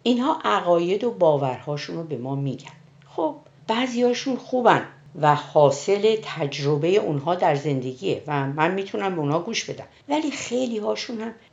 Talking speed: 140 wpm